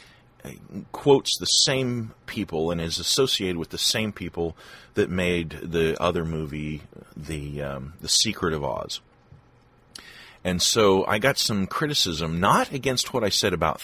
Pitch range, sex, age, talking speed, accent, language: 75-100 Hz, male, 40-59, 145 wpm, American, English